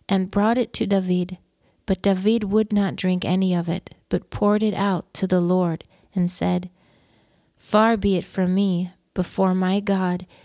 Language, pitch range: English, 180-205 Hz